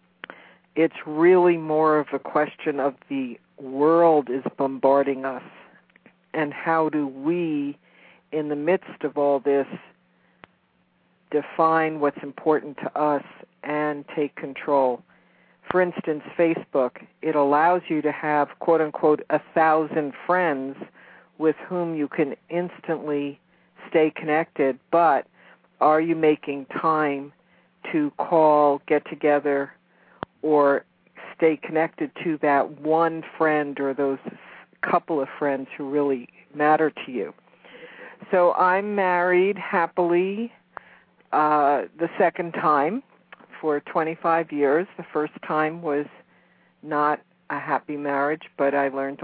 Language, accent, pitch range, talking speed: English, American, 140-165 Hz, 120 wpm